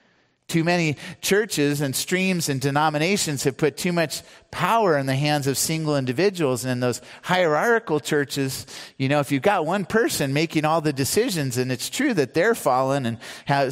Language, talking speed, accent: English, 180 wpm, American